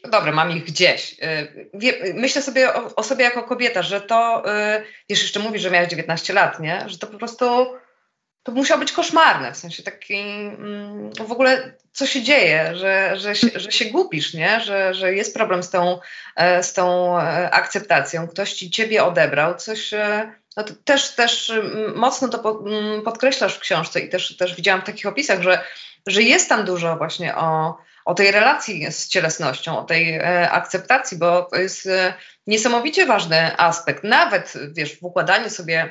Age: 20-39